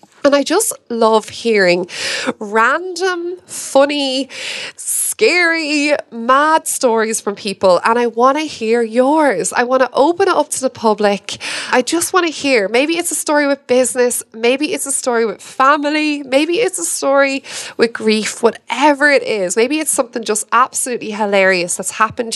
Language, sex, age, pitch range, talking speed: English, female, 20-39, 200-295 Hz, 165 wpm